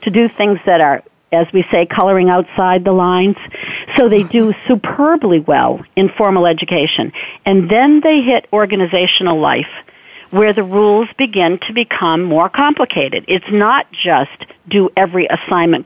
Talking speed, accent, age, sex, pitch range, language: 150 wpm, American, 50-69, female, 175-225 Hz, English